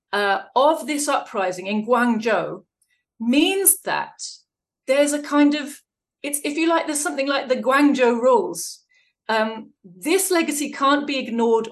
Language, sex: English, female